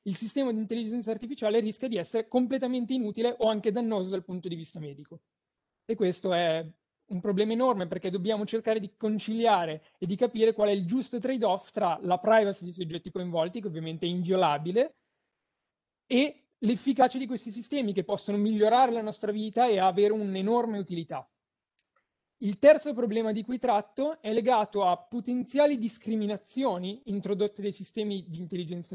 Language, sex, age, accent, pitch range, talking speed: Italian, male, 20-39, native, 190-235 Hz, 160 wpm